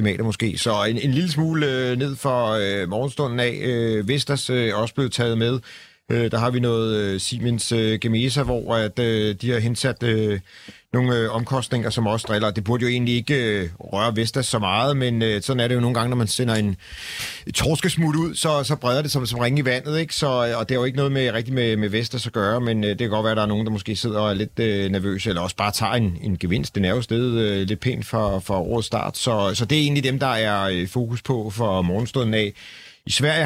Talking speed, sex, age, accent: 230 wpm, male, 40-59, native